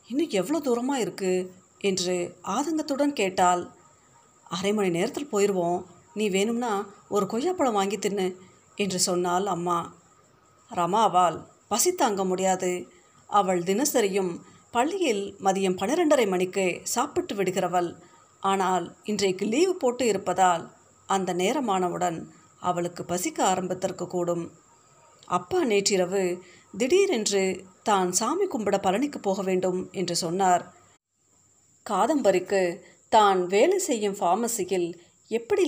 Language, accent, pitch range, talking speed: Tamil, native, 180-225 Hz, 100 wpm